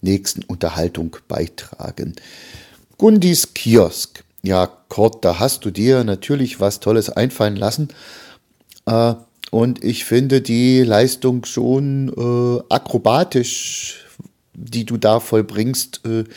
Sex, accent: male, German